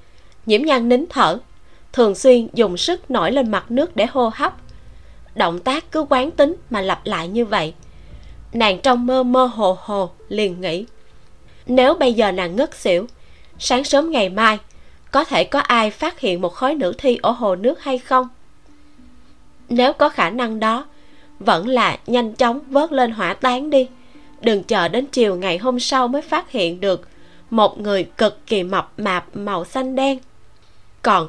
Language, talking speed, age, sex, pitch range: Vietnamese, 180 wpm, 20-39, female, 200-265 Hz